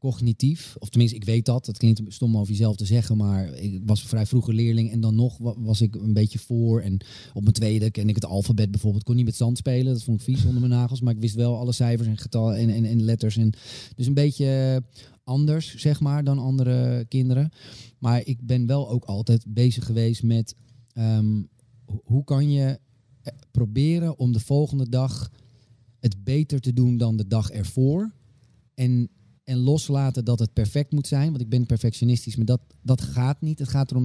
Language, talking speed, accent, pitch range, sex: Dutch, 205 wpm, Dutch, 110-135 Hz, male